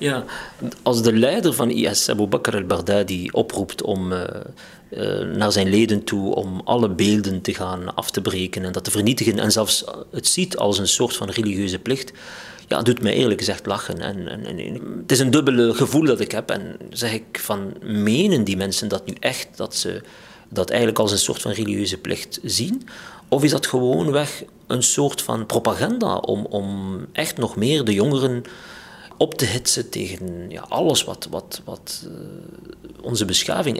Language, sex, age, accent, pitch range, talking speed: Dutch, male, 50-69, Dutch, 100-125 Hz, 185 wpm